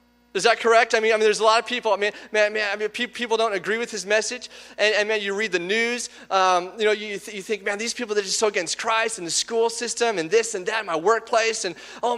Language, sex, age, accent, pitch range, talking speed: English, male, 30-49, American, 205-255 Hz, 290 wpm